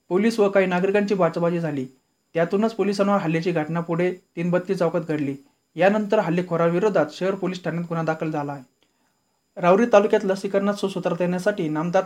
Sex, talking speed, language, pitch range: male, 140 wpm, Marathi, 165-195 Hz